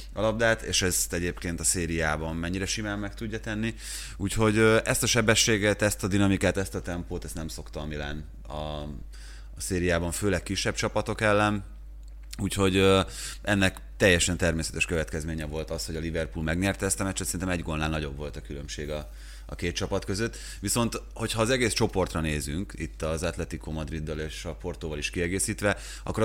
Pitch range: 80-100 Hz